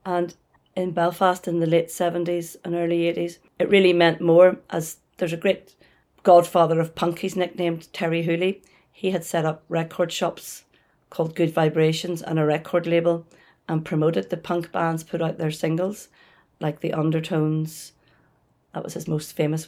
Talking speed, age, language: 170 wpm, 40-59, English